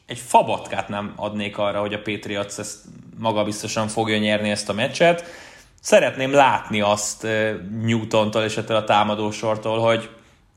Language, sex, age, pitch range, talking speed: Hungarian, male, 20-39, 105-125 Hz, 135 wpm